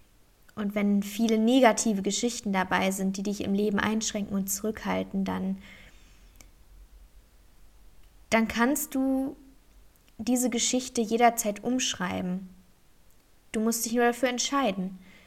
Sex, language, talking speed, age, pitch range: female, German, 110 wpm, 20-39, 190-230 Hz